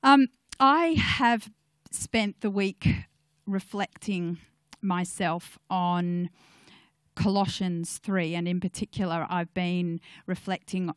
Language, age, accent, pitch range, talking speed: English, 40-59, Australian, 180-220 Hz, 95 wpm